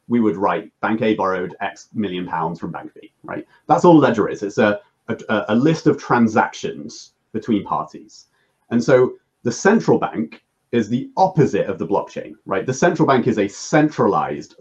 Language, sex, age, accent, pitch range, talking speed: English, male, 30-49, British, 105-150 Hz, 185 wpm